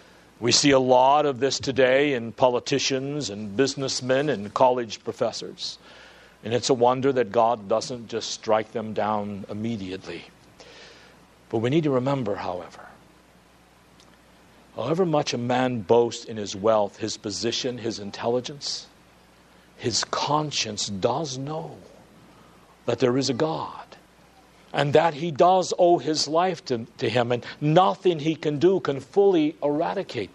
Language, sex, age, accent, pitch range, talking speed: English, male, 50-69, American, 120-170 Hz, 140 wpm